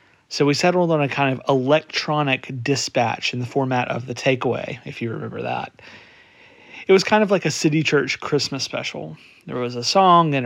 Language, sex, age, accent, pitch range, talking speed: English, male, 40-59, American, 125-150 Hz, 195 wpm